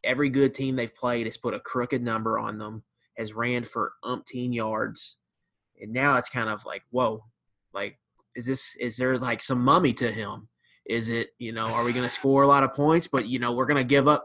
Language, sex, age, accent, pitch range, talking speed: English, male, 30-49, American, 115-135 Hz, 235 wpm